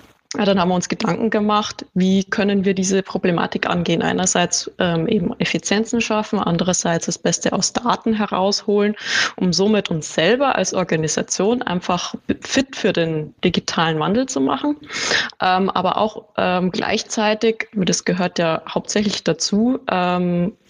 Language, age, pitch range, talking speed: German, 20-39, 175-210 Hz, 140 wpm